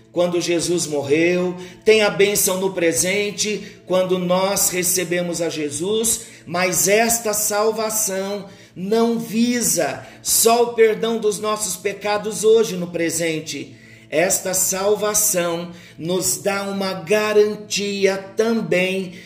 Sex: male